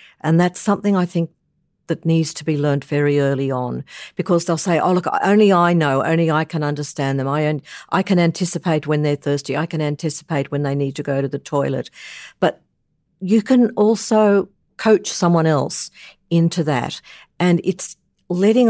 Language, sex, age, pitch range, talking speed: English, female, 50-69, 145-175 Hz, 175 wpm